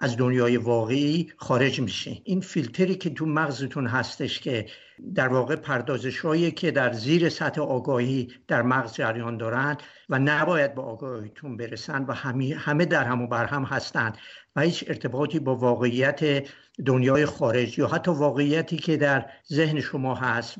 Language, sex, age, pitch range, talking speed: English, male, 60-79, 125-150 Hz, 150 wpm